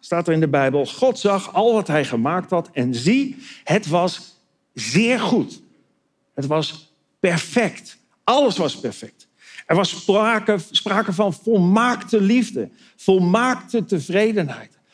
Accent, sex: Dutch, male